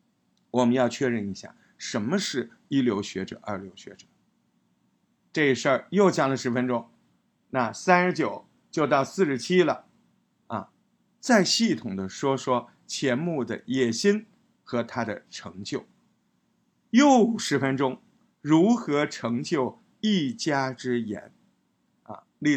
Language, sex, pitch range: Chinese, male, 130-205 Hz